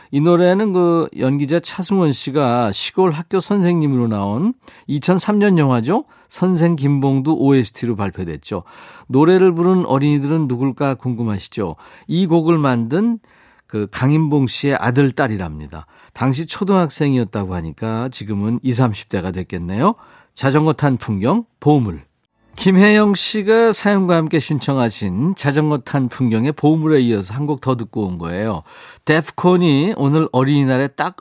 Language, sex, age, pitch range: Korean, male, 40-59, 110-165 Hz